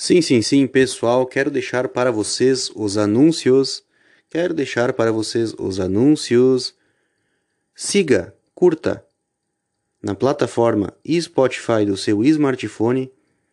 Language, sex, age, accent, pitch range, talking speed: Portuguese, male, 30-49, Brazilian, 110-135 Hz, 105 wpm